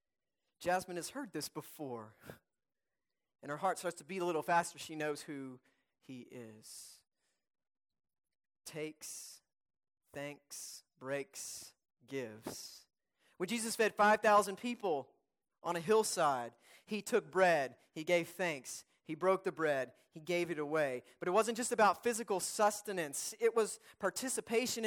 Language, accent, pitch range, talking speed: English, American, 140-200 Hz, 135 wpm